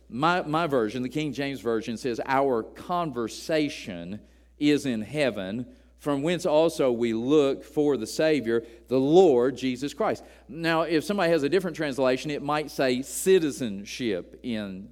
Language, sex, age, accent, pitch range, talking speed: English, male, 50-69, American, 115-155 Hz, 150 wpm